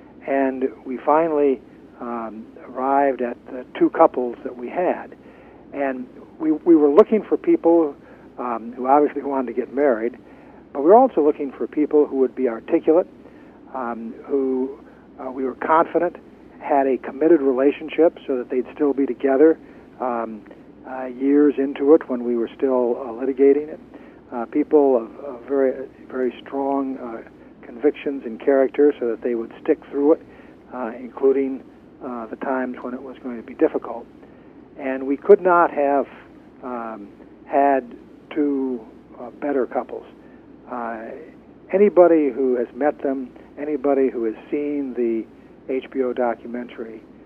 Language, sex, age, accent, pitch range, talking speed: English, male, 60-79, American, 125-145 Hz, 150 wpm